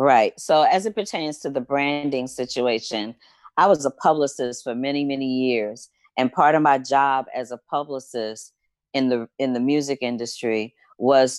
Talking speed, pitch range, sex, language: 170 wpm, 115-140 Hz, female, English